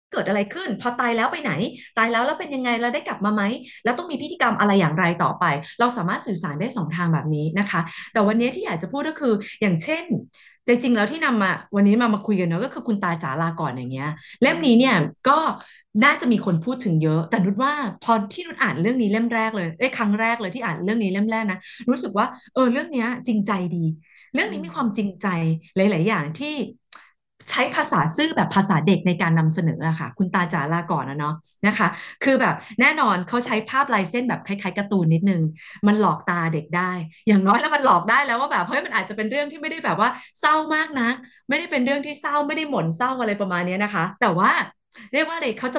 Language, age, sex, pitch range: Thai, 20-39, female, 180-245 Hz